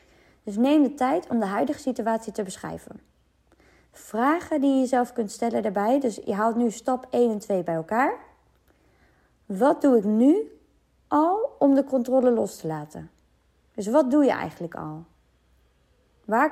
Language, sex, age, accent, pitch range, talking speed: Dutch, female, 20-39, Dutch, 195-290 Hz, 165 wpm